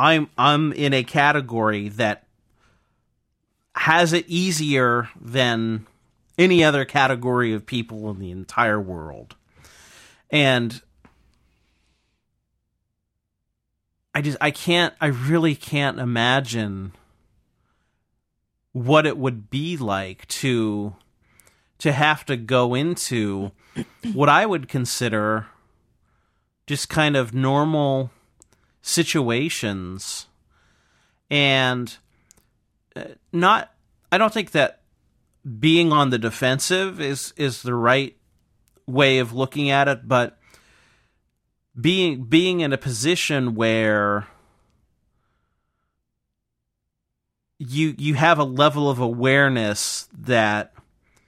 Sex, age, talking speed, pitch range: male, 30-49, 95 wpm, 110-150 Hz